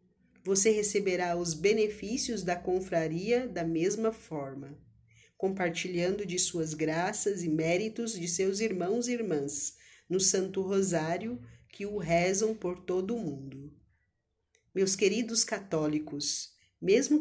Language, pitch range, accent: Portuguese, 165-215 Hz, Brazilian